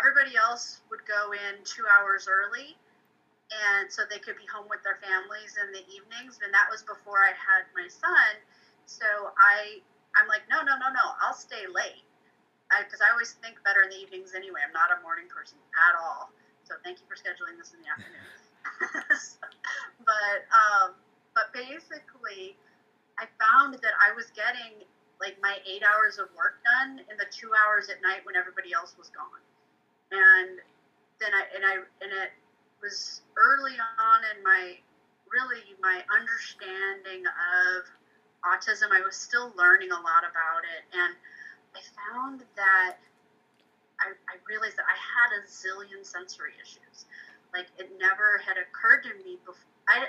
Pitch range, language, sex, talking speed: 190-280 Hz, English, female, 165 wpm